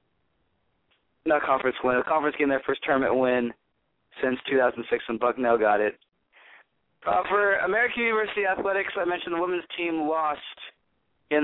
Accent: American